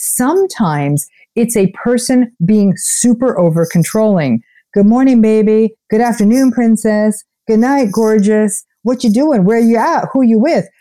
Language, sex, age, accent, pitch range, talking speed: English, female, 50-69, American, 175-230 Hz, 140 wpm